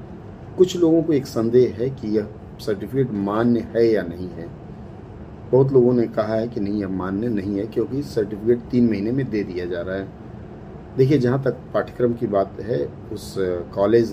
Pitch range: 95-125 Hz